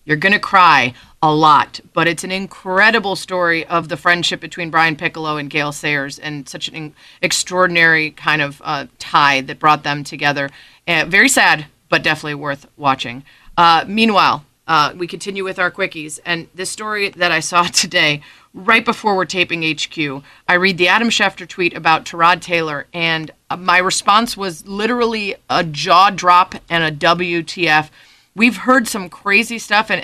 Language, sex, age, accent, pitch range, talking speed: English, female, 30-49, American, 165-210 Hz, 170 wpm